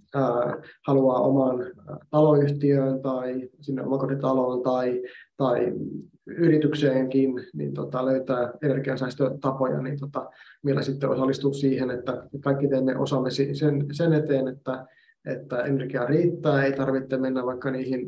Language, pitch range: Finnish, 130-145 Hz